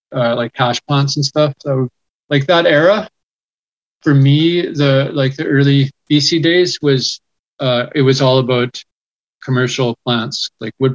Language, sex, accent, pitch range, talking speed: English, male, American, 120-140 Hz, 155 wpm